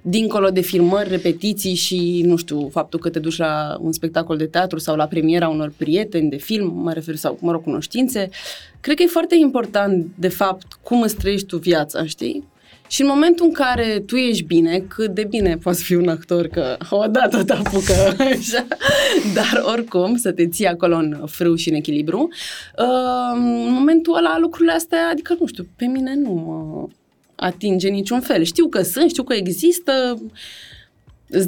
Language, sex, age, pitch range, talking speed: Romanian, female, 20-39, 170-240 Hz, 180 wpm